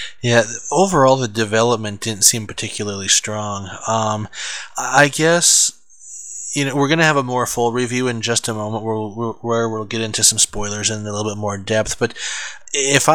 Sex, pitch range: male, 110-130 Hz